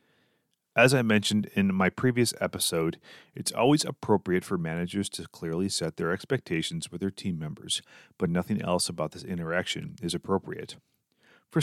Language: English